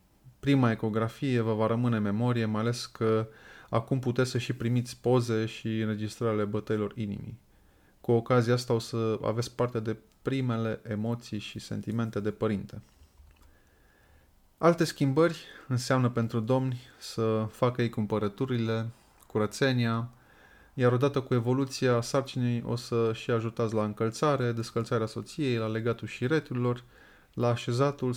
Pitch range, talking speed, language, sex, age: 110-125 Hz, 130 wpm, Romanian, male, 20-39